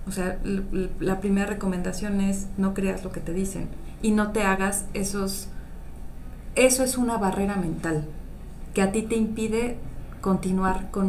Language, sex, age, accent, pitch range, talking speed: Spanish, female, 30-49, Mexican, 190-240 Hz, 155 wpm